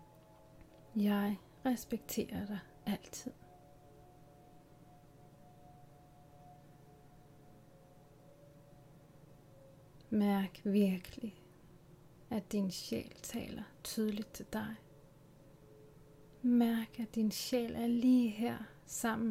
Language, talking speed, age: Danish, 65 wpm, 30-49